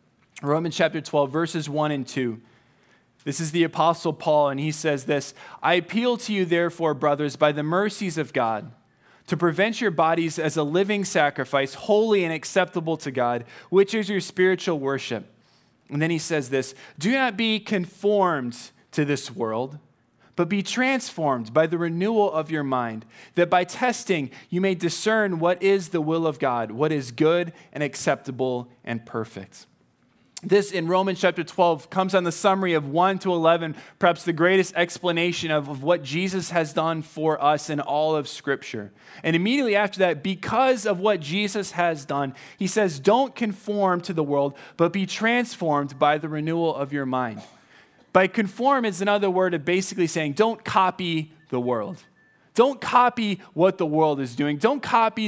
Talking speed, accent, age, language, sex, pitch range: 175 wpm, American, 20-39, English, male, 145-195 Hz